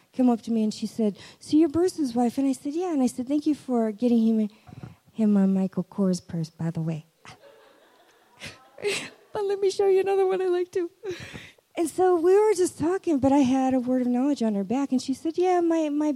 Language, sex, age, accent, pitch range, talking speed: English, female, 50-69, American, 185-265 Hz, 235 wpm